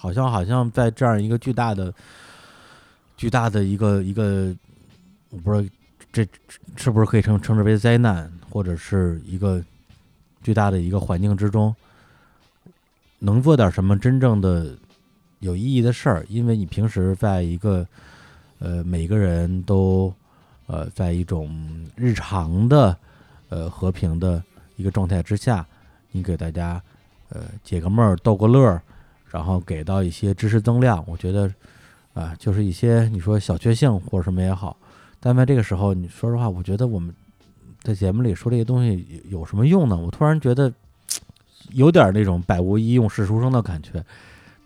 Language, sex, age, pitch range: Chinese, male, 20-39, 90-115 Hz